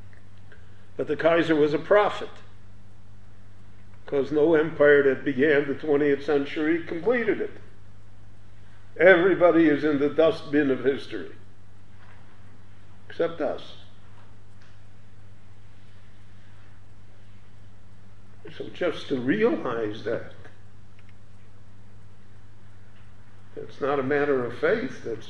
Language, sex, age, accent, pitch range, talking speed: English, male, 50-69, American, 100-140 Hz, 90 wpm